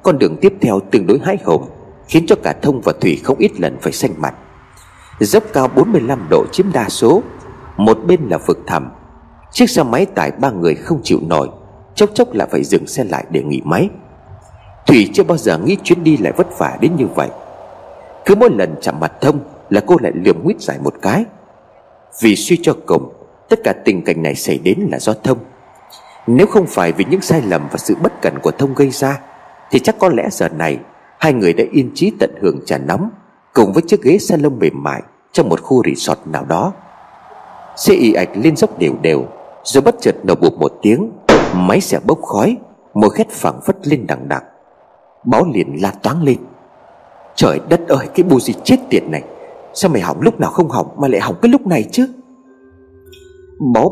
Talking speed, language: 210 wpm, Vietnamese